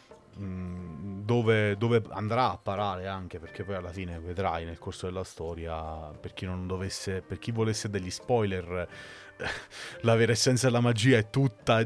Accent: native